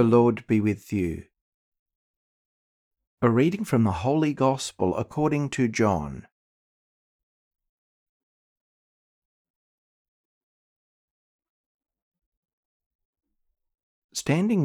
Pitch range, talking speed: 85-120 Hz, 60 wpm